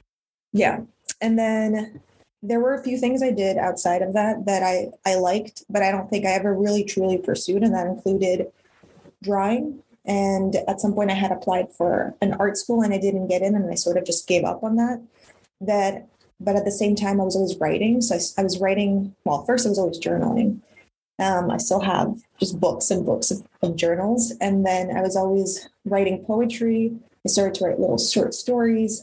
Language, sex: English, female